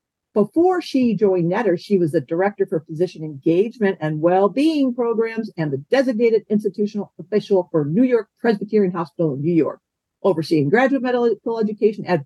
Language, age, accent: English, 50-69, American